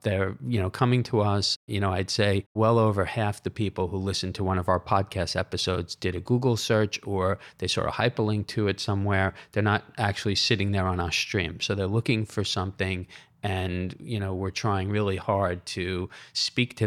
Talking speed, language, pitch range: 205 wpm, English, 95-110 Hz